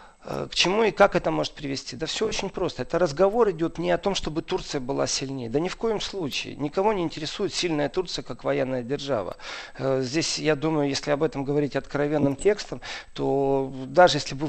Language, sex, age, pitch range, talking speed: Russian, male, 40-59, 130-170 Hz, 195 wpm